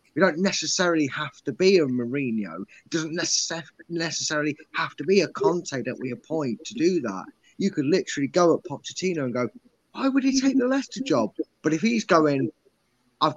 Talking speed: 190 wpm